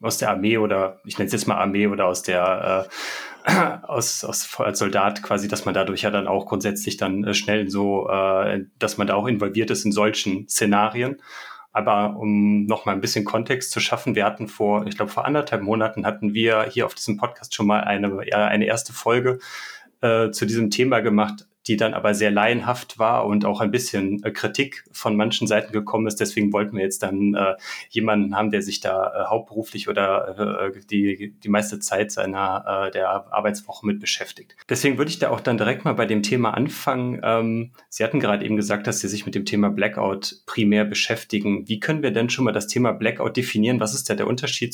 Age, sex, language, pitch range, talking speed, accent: 30-49, male, German, 105-115 Hz, 210 wpm, German